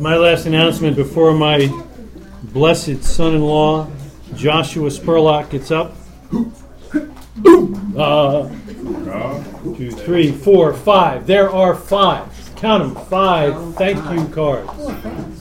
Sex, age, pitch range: male, 40-59, 125-175 Hz